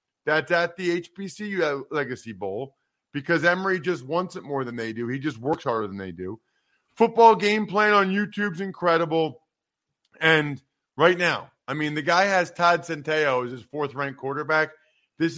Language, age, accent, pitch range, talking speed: English, 40-59, American, 155-190 Hz, 170 wpm